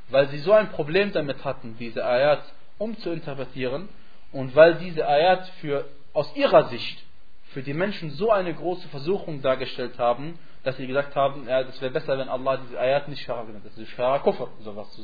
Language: German